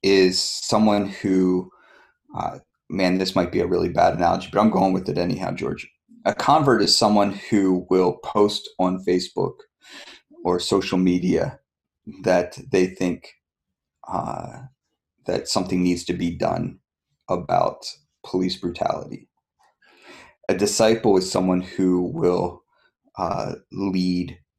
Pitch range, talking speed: 90-95 Hz, 125 wpm